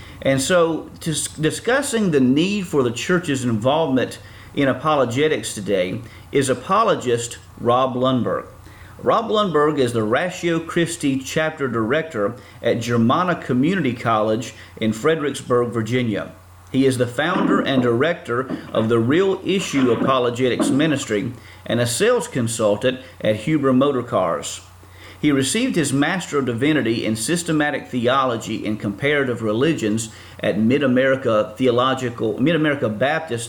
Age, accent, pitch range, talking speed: 40-59, American, 110-145 Hz, 120 wpm